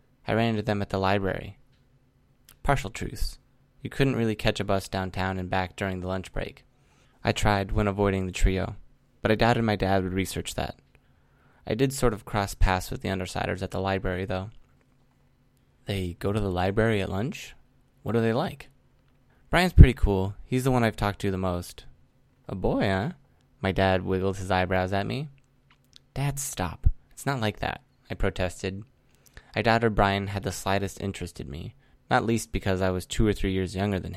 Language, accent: English, American